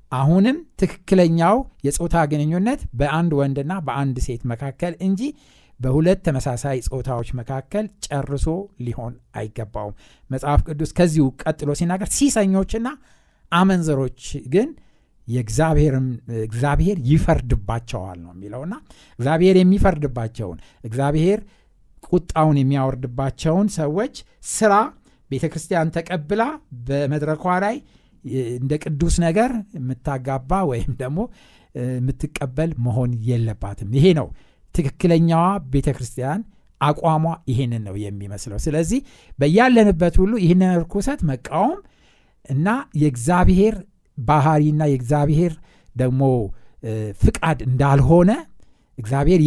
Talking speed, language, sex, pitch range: 85 wpm, Amharic, male, 130-185 Hz